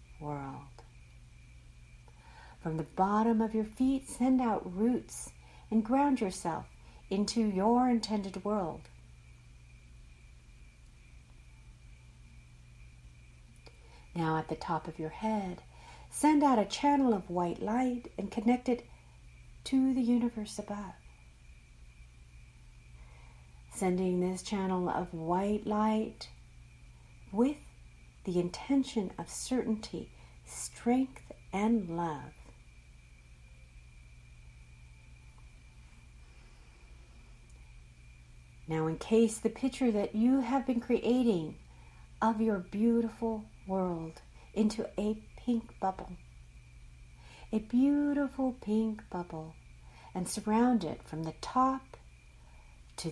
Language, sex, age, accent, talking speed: English, female, 50-69, American, 90 wpm